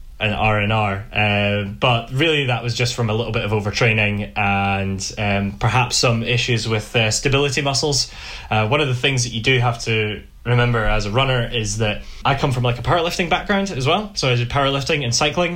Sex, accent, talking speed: male, British, 210 wpm